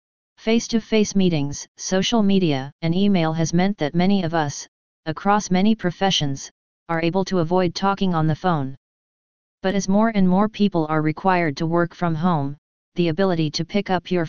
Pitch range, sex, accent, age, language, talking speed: 160-190 Hz, female, American, 30-49, English, 170 wpm